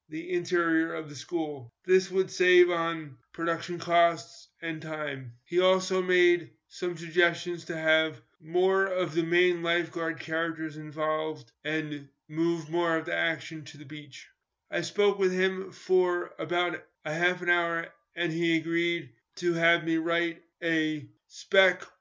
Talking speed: 150 wpm